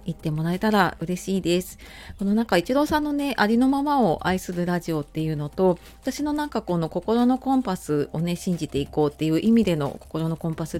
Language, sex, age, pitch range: Japanese, female, 30-49, 160-220 Hz